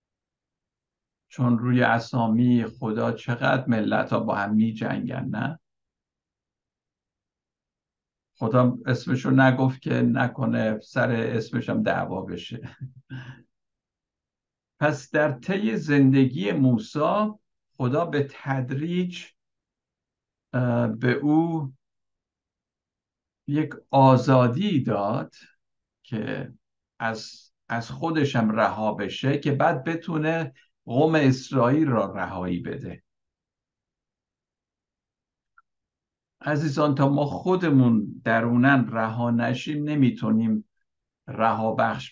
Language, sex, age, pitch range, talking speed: Persian, male, 60-79, 110-140 Hz, 80 wpm